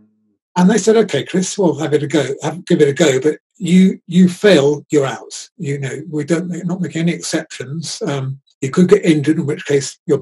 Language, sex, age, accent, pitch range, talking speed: English, male, 50-69, British, 140-165 Hz, 230 wpm